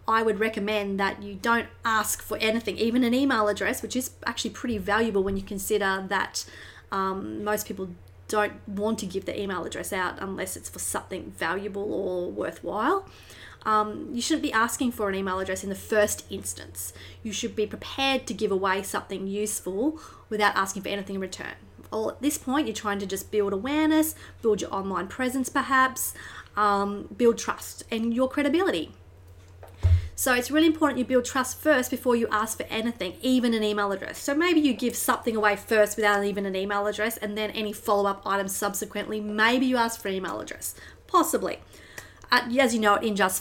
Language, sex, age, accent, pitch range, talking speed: English, female, 30-49, Australian, 200-240 Hz, 190 wpm